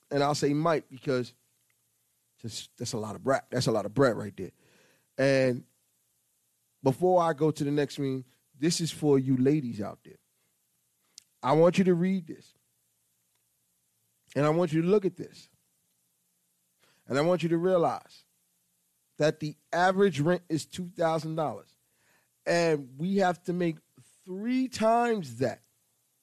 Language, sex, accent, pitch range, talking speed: English, male, American, 125-180 Hz, 155 wpm